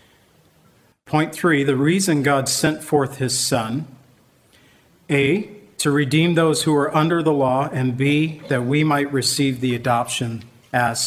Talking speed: 145 wpm